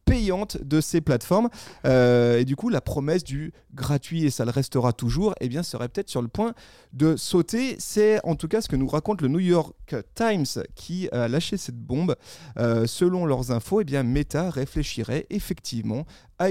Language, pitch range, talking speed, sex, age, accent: French, 130-185 Hz, 200 wpm, male, 30-49, French